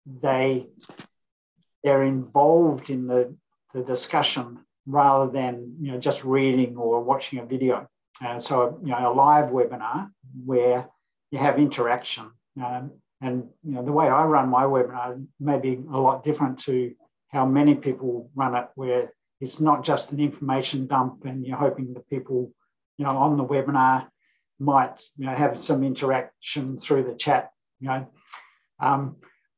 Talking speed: 160 wpm